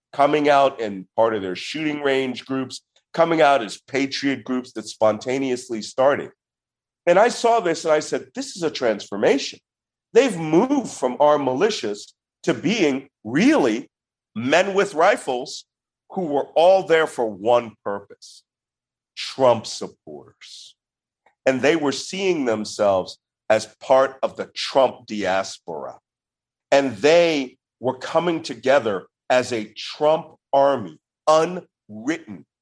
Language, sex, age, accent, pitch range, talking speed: English, male, 50-69, American, 110-150 Hz, 125 wpm